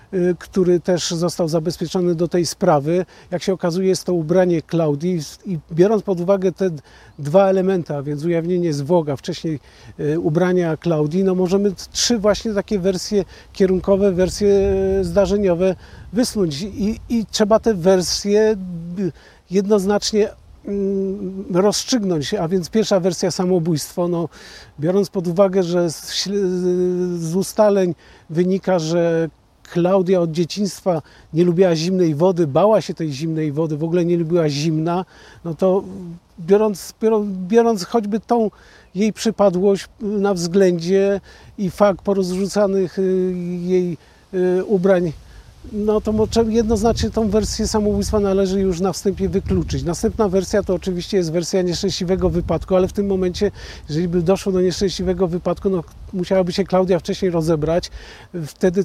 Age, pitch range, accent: 40-59, 175-195 Hz, native